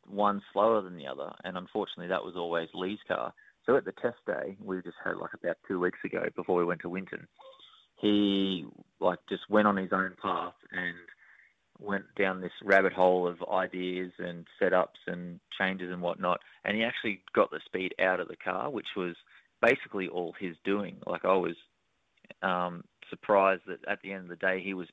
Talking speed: 195 wpm